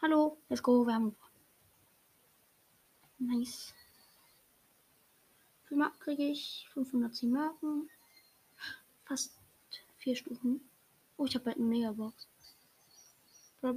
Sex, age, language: female, 20-39, German